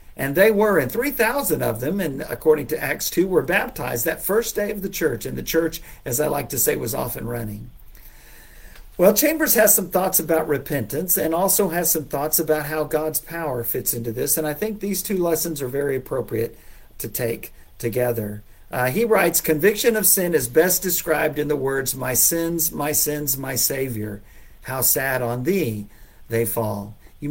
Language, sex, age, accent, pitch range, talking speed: English, male, 50-69, American, 120-170 Hz, 195 wpm